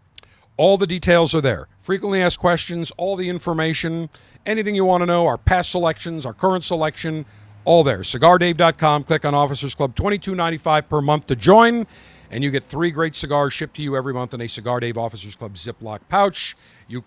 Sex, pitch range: male, 115-155 Hz